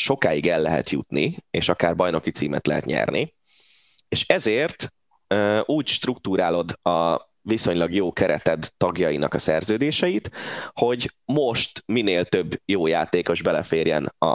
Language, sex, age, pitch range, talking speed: Hungarian, male, 20-39, 85-130 Hz, 125 wpm